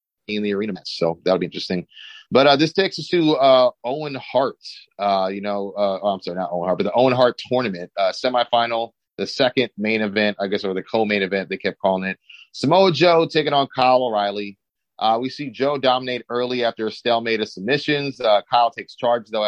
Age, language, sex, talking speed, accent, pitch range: 30-49, English, male, 215 wpm, American, 100-125 Hz